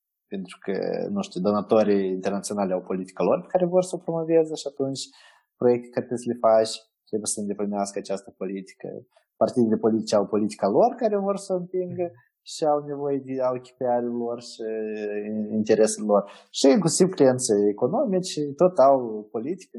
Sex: male